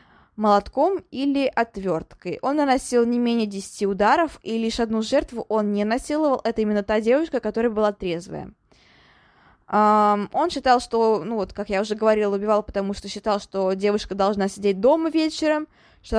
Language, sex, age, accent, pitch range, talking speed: Russian, female, 20-39, native, 205-250 Hz, 160 wpm